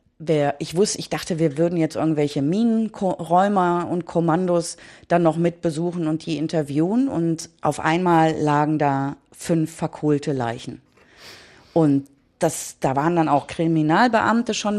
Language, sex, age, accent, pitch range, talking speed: German, female, 30-49, German, 150-175 Hz, 140 wpm